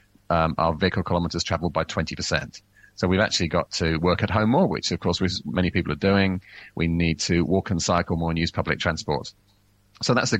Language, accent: English, British